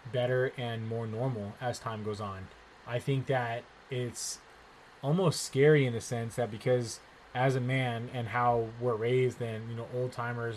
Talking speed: 175 wpm